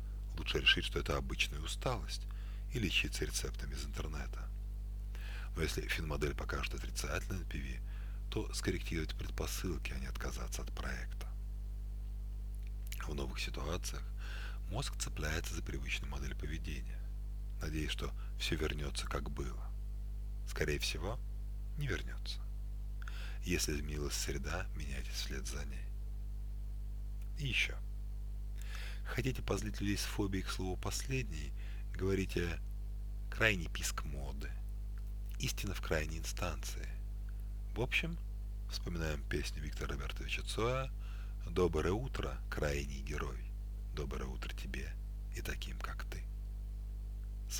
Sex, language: male, Russian